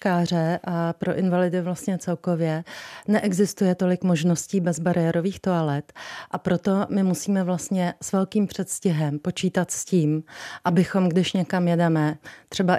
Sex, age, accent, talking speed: female, 40-59, native, 120 wpm